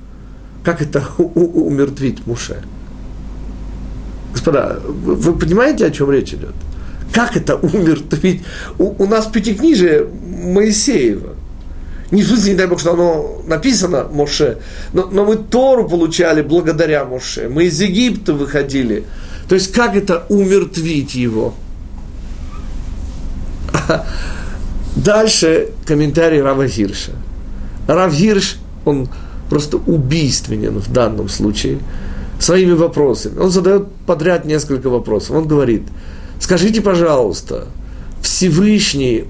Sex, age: male, 50-69